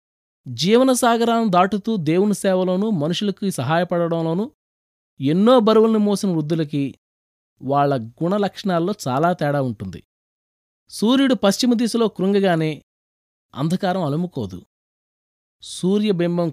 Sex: male